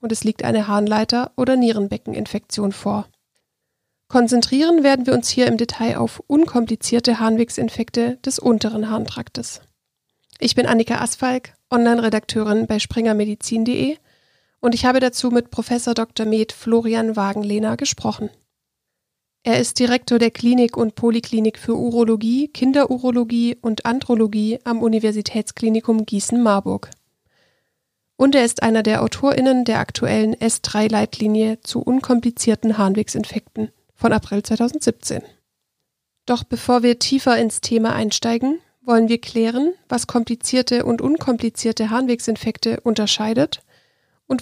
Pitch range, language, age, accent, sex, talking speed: 220-245 Hz, German, 40-59, German, female, 115 wpm